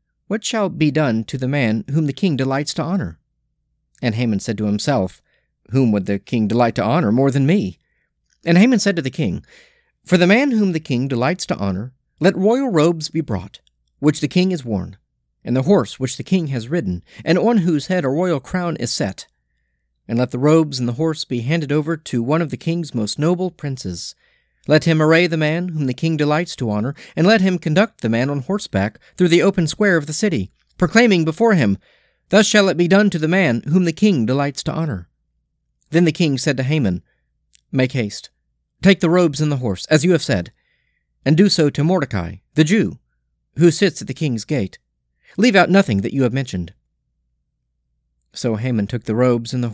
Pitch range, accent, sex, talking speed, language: 110-175 Hz, American, male, 210 wpm, English